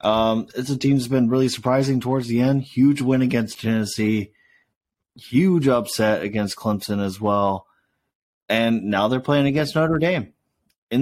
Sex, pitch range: male, 110-135 Hz